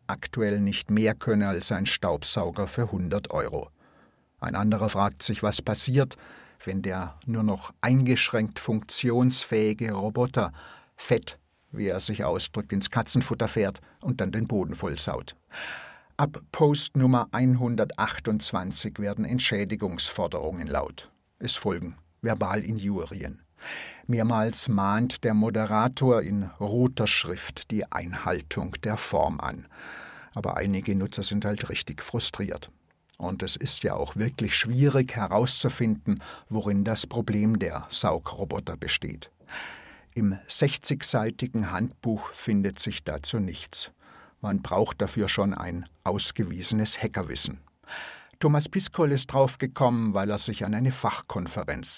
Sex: male